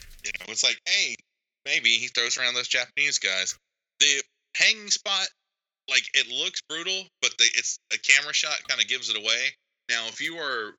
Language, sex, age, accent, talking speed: English, male, 20-39, American, 190 wpm